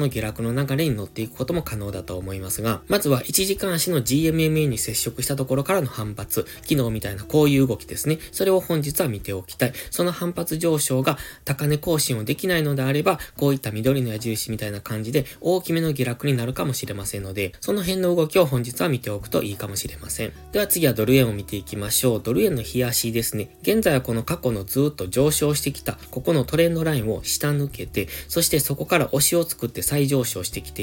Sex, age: male, 20-39